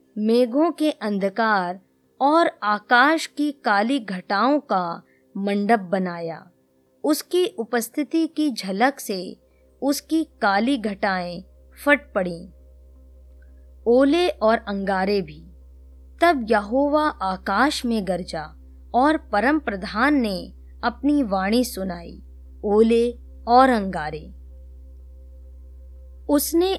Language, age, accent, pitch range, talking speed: Hindi, 20-39, native, 175-270 Hz, 90 wpm